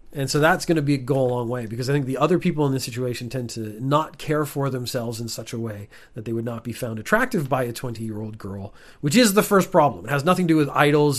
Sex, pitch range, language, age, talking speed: male, 125-180 Hz, English, 40-59, 275 wpm